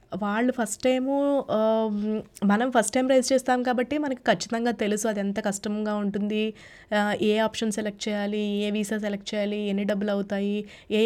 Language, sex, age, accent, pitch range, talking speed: Telugu, female, 20-39, native, 210-255 Hz, 150 wpm